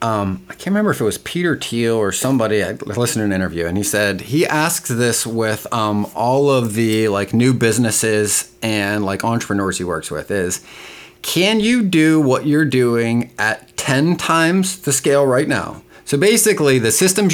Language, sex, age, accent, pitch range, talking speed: English, male, 30-49, American, 110-155 Hz, 185 wpm